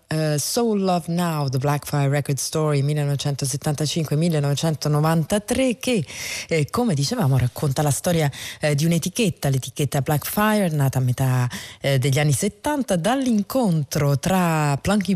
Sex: female